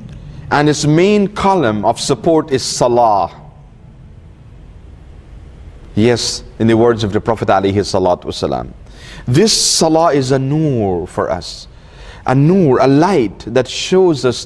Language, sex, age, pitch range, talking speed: English, male, 30-49, 115-150 Hz, 130 wpm